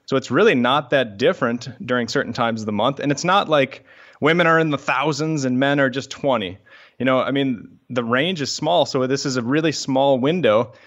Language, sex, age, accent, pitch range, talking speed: English, male, 30-49, American, 115-145 Hz, 225 wpm